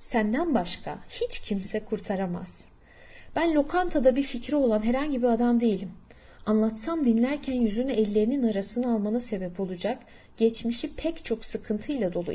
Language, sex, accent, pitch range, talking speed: Turkish, female, native, 195-260 Hz, 130 wpm